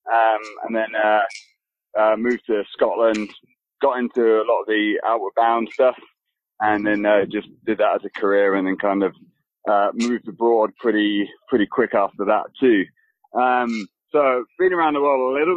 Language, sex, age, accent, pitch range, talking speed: English, male, 20-39, British, 105-130 Hz, 180 wpm